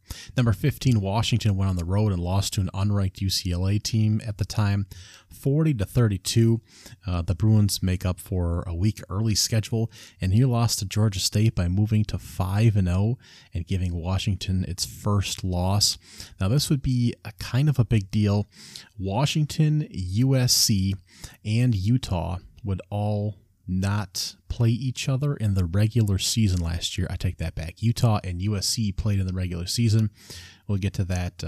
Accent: American